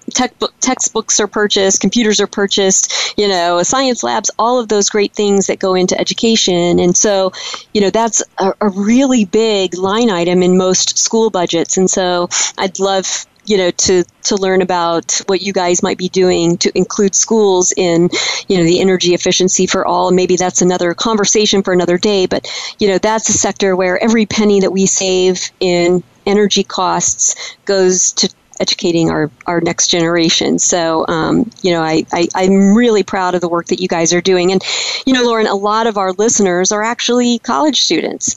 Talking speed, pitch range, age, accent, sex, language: 190 wpm, 185-225 Hz, 40-59, American, female, English